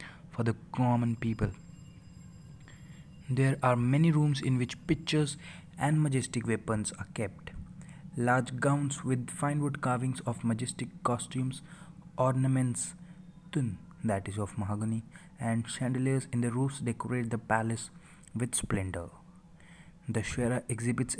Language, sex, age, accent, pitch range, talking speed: English, male, 30-49, Indian, 120-140 Hz, 120 wpm